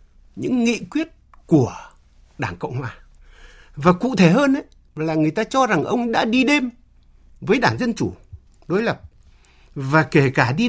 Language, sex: Vietnamese, male